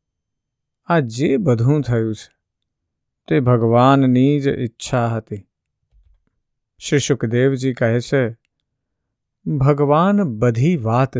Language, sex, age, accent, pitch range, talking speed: Gujarati, male, 50-69, native, 110-140 Hz, 60 wpm